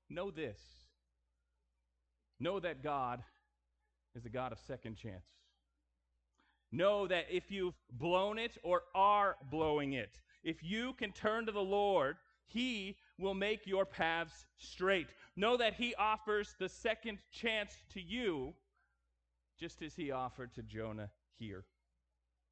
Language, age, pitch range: English, 30-49, 115-170 Hz